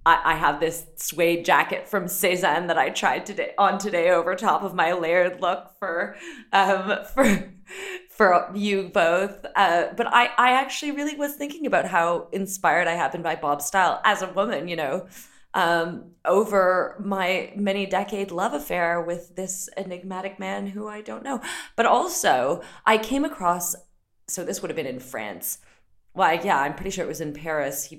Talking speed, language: 180 wpm, English